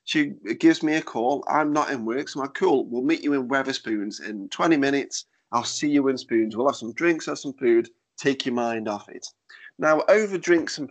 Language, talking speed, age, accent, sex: English, 230 wpm, 20-39, British, male